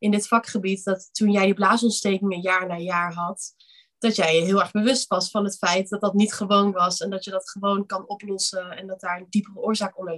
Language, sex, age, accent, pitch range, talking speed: Dutch, female, 20-39, Dutch, 190-230 Hz, 240 wpm